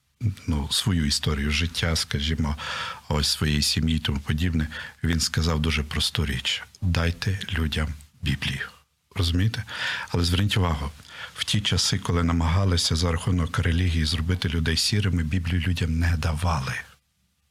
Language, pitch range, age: Ukrainian, 80-100 Hz, 50-69